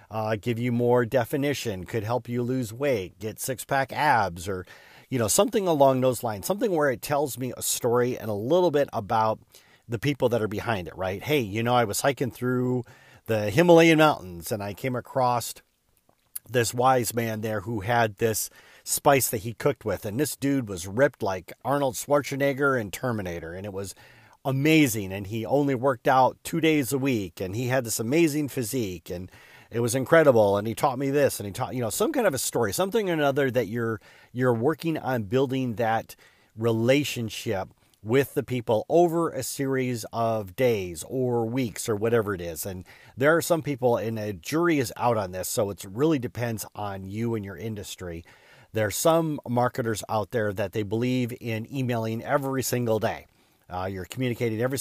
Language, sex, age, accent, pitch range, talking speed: English, male, 40-59, American, 110-135 Hz, 195 wpm